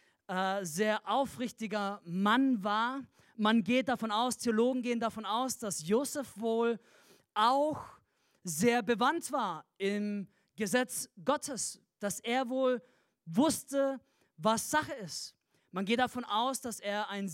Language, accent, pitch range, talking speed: German, German, 210-255 Hz, 125 wpm